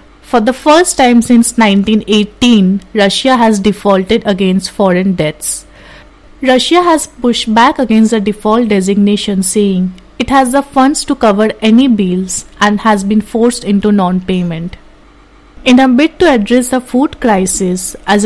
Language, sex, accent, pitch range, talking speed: English, female, Indian, 195-240 Hz, 145 wpm